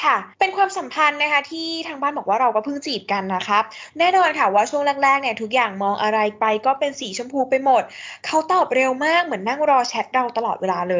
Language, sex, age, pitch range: Thai, female, 10-29, 210-285 Hz